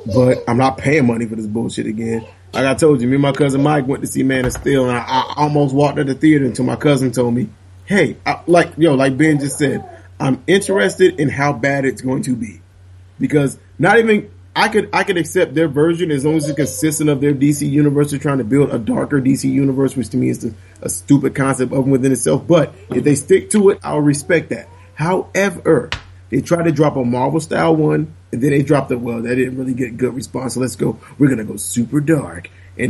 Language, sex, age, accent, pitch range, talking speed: English, male, 30-49, American, 120-150 Hz, 245 wpm